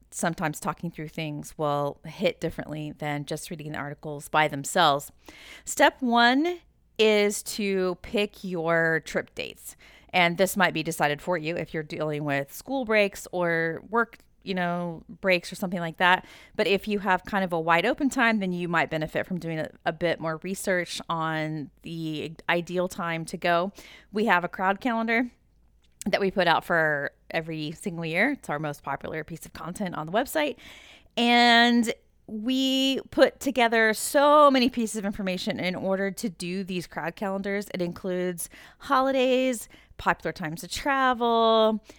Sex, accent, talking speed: female, American, 165 wpm